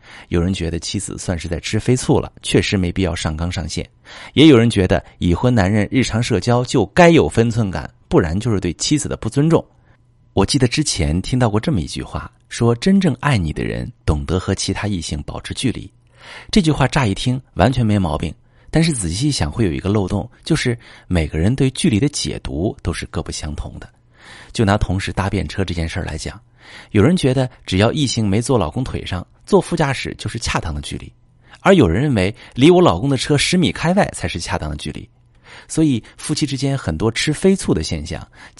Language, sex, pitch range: Chinese, male, 90-130 Hz